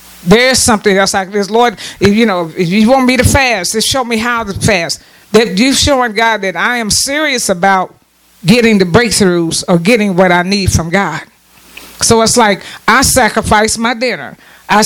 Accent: American